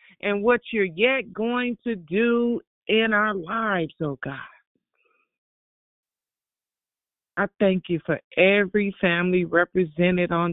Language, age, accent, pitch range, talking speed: English, 40-59, American, 175-215 Hz, 115 wpm